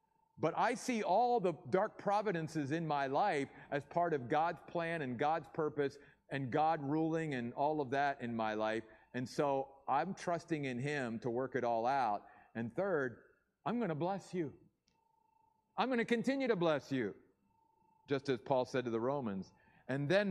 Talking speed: 185 wpm